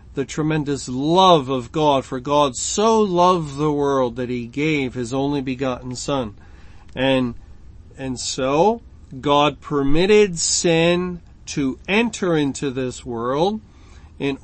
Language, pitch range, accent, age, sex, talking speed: English, 130-170 Hz, American, 40-59, male, 125 wpm